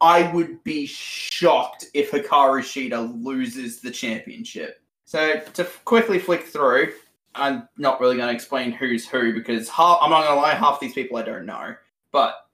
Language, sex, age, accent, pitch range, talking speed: English, male, 20-39, Australian, 140-190 Hz, 175 wpm